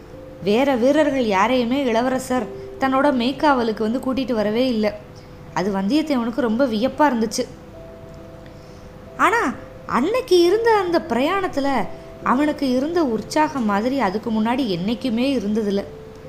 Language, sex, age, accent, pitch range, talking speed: Tamil, female, 20-39, native, 210-275 Hz, 105 wpm